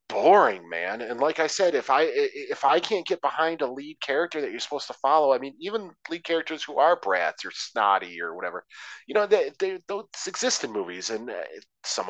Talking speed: 215 wpm